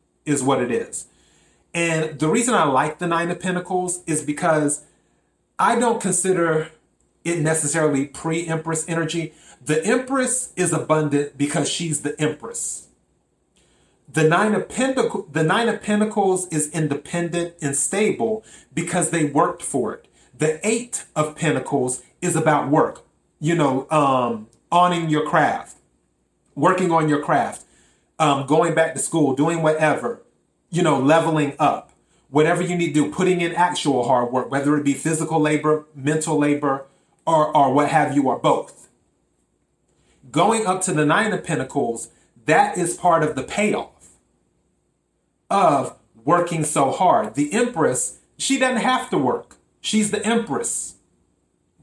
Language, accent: English, American